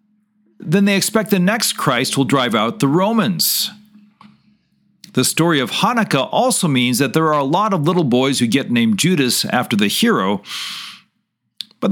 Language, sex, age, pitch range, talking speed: English, male, 50-69, 150-210 Hz, 165 wpm